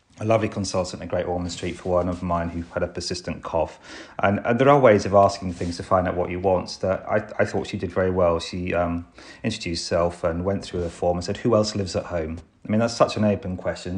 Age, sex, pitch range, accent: 30-49, male, 90-105 Hz, British